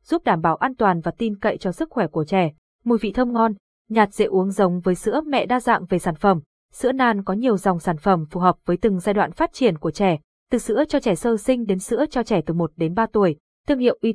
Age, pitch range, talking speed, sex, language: 20-39, 185-235 Hz, 270 wpm, female, Vietnamese